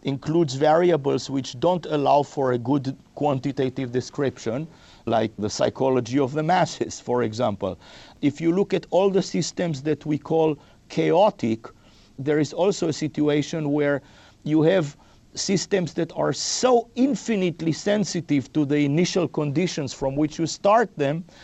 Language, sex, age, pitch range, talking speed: English, male, 50-69, 140-170 Hz, 145 wpm